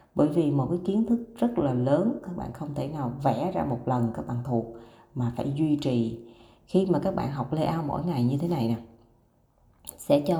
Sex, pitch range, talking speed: female, 120-175 Hz, 225 wpm